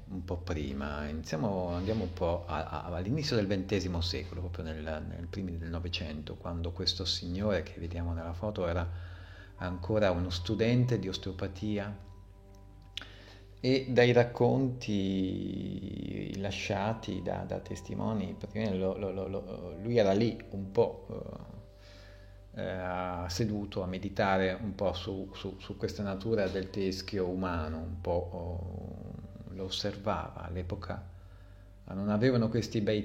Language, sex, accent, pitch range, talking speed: Italian, male, native, 90-100 Hz, 115 wpm